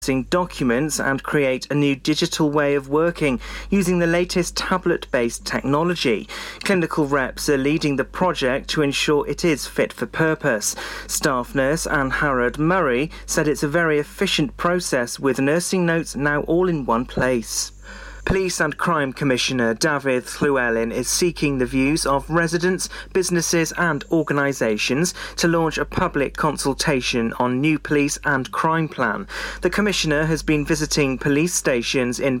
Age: 40-59